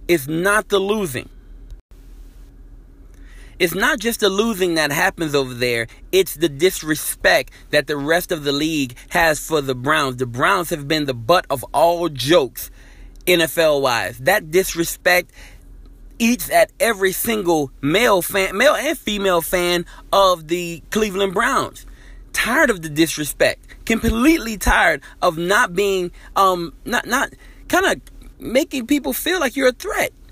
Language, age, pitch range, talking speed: English, 30-49, 170-245 Hz, 145 wpm